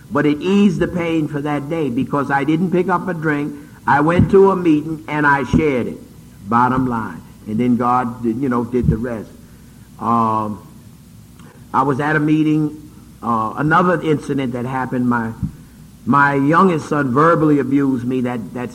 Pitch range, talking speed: 125-155 Hz, 175 wpm